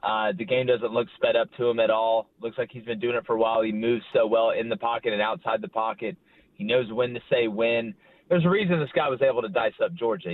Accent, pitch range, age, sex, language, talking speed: American, 125-180 Hz, 30-49, male, English, 280 wpm